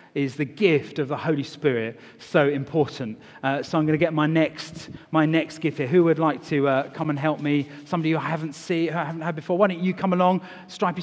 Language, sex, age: English, male, 40-59